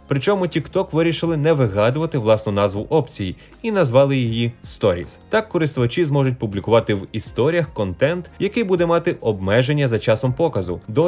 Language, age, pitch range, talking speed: Ukrainian, 20-39, 110-165 Hz, 145 wpm